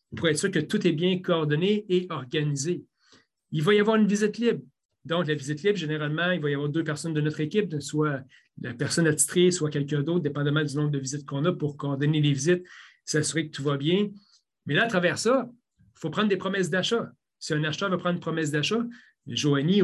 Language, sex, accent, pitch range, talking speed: French, male, Canadian, 150-185 Hz, 225 wpm